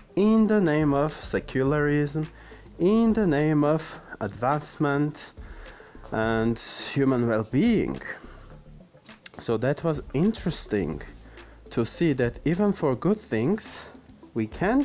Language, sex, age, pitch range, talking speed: English, male, 30-49, 125-175 Hz, 105 wpm